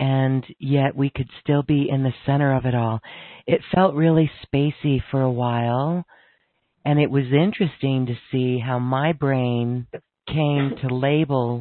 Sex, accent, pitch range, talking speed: female, American, 125-150 Hz, 160 wpm